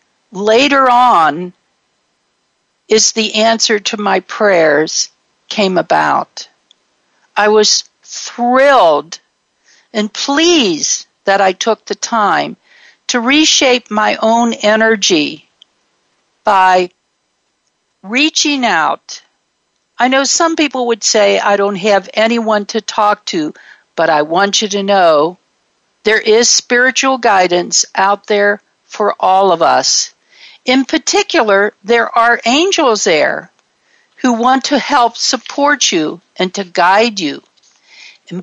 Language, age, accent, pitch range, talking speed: English, 60-79, American, 200-270 Hz, 115 wpm